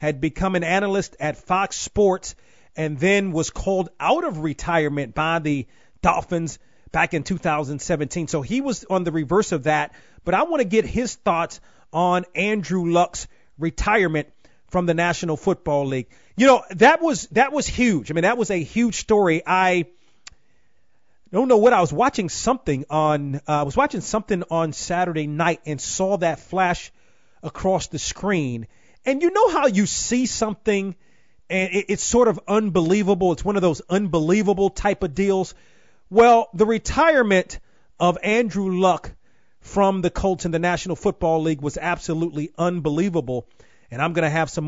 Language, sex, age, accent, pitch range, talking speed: English, male, 30-49, American, 155-205 Hz, 170 wpm